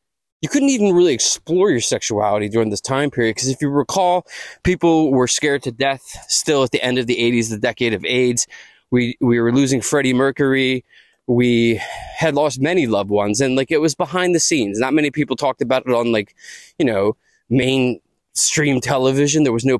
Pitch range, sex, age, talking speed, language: 125-155 Hz, male, 20-39, 195 wpm, English